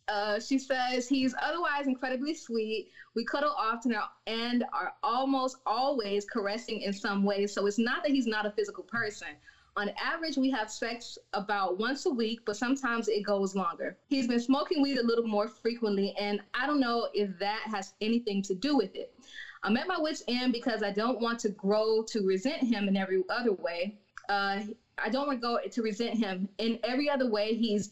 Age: 20-39